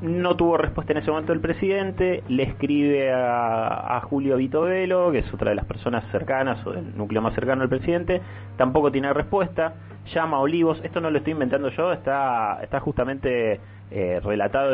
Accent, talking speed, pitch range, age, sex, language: Argentinian, 185 wpm, 100-140 Hz, 30-49, male, Spanish